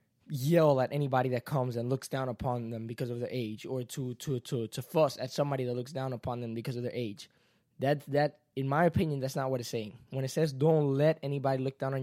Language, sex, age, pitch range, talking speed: English, male, 20-39, 125-145 Hz, 250 wpm